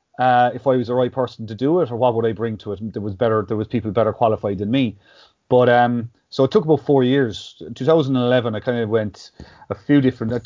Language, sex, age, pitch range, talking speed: English, male, 30-49, 110-130 Hz, 260 wpm